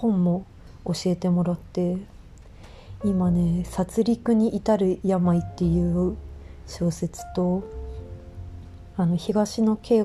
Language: Japanese